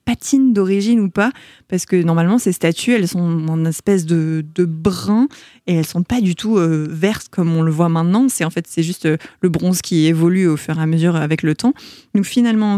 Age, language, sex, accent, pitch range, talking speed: 20-39, French, female, French, 165-210 Hz, 230 wpm